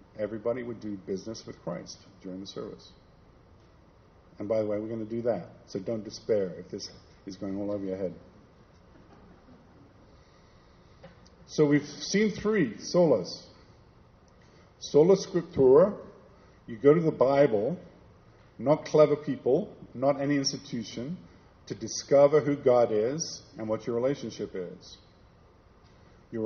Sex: male